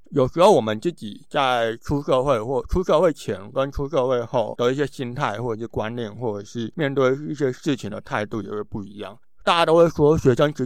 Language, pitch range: Chinese, 110-140 Hz